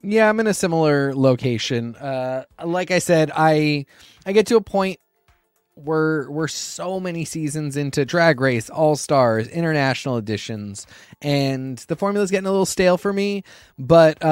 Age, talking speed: 20-39, 165 wpm